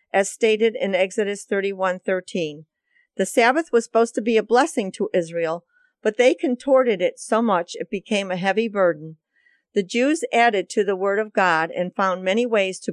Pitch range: 190-245 Hz